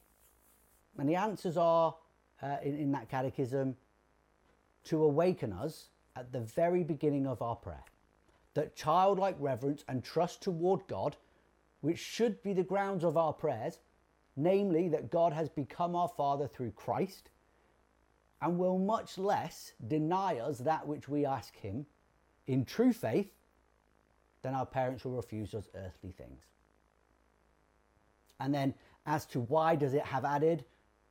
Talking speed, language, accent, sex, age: 145 wpm, English, British, male, 40-59